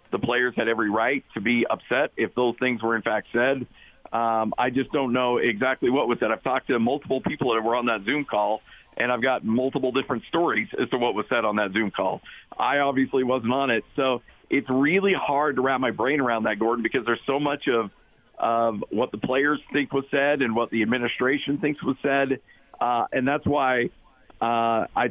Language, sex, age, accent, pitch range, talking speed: English, male, 50-69, American, 120-140 Hz, 215 wpm